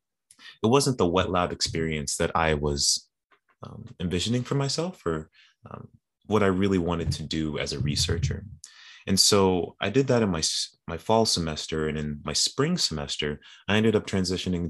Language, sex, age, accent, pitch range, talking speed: English, male, 30-49, American, 80-100 Hz, 175 wpm